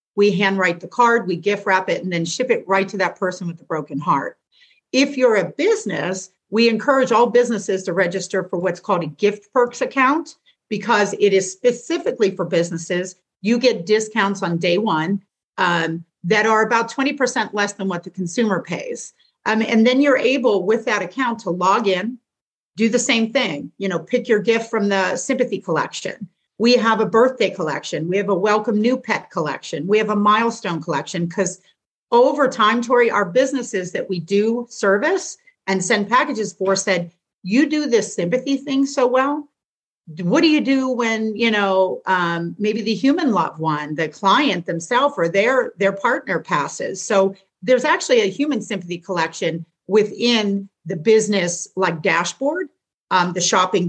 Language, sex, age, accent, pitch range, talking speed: English, female, 50-69, American, 185-245 Hz, 175 wpm